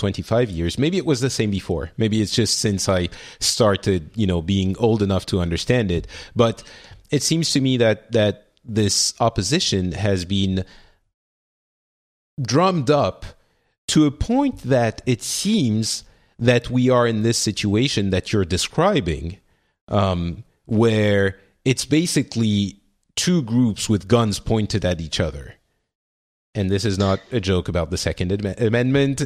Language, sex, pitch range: English, male, 95-125 Hz